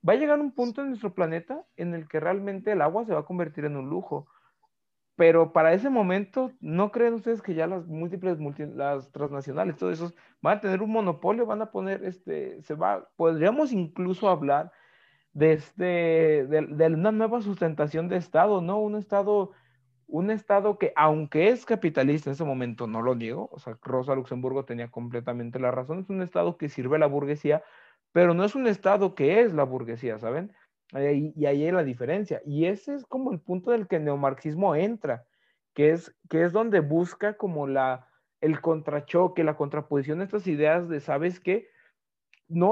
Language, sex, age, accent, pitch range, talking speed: Spanish, male, 40-59, Mexican, 150-205 Hz, 190 wpm